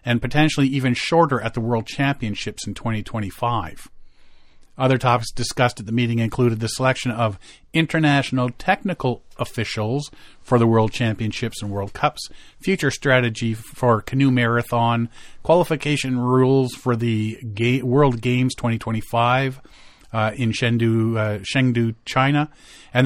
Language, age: English, 40-59